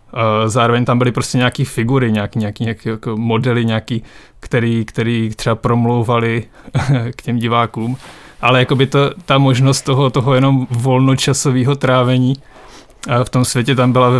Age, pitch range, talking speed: 20-39, 115-130 Hz, 140 wpm